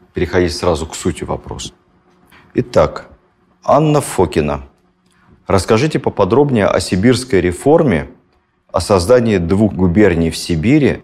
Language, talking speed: Russian, 105 wpm